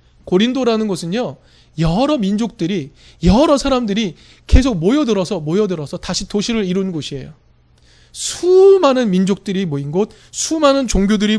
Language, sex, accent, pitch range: Korean, male, native, 150-235 Hz